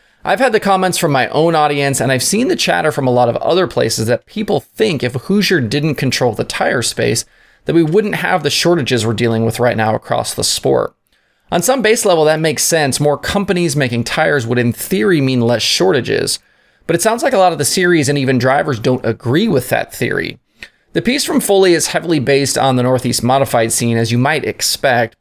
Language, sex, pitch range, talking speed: English, male, 120-165 Hz, 220 wpm